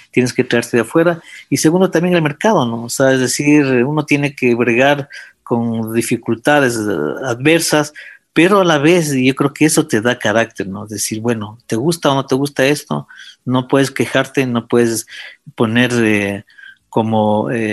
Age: 50-69